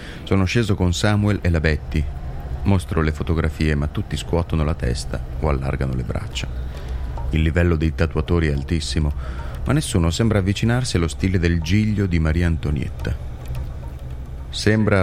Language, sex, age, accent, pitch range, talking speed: Italian, male, 30-49, native, 70-90 Hz, 150 wpm